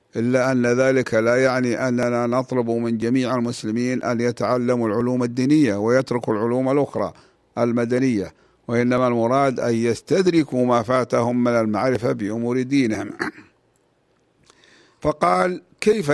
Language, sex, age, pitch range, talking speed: Arabic, male, 50-69, 115-130 Hz, 110 wpm